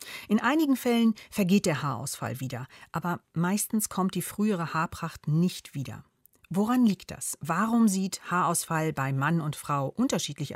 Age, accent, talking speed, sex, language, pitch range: 40-59, German, 150 wpm, female, German, 150-215 Hz